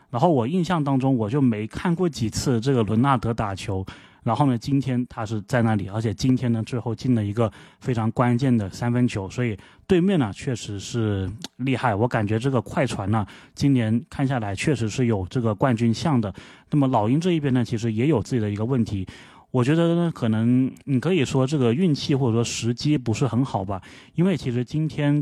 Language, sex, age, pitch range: Chinese, male, 20-39, 110-140 Hz